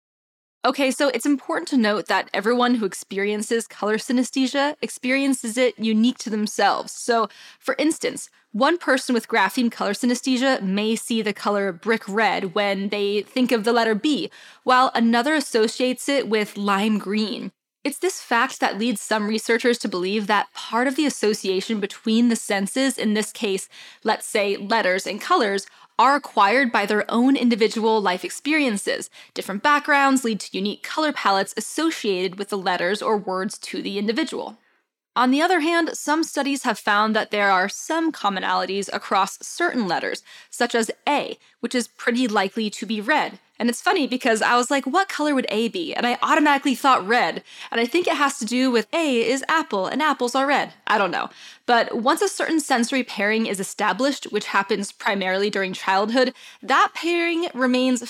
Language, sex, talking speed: English, female, 180 wpm